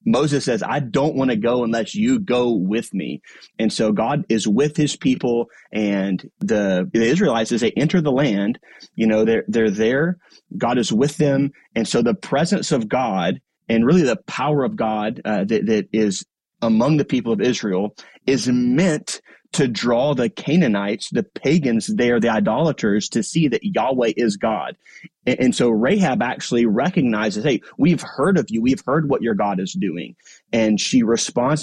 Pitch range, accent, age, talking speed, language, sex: 110-145 Hz, American, 30-49, 180 wpm, English, male